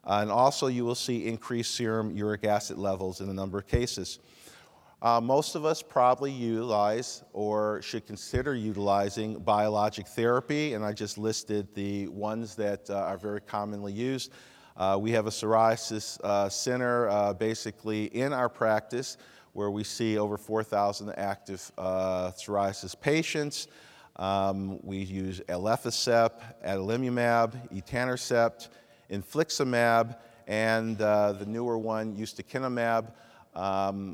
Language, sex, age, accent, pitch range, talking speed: English, male, 50-69, American, 100-115 Hz, 130 wpm